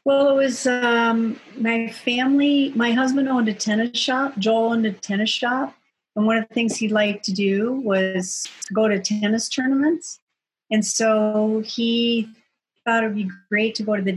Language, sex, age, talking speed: English, female, 50-69, 180 wpm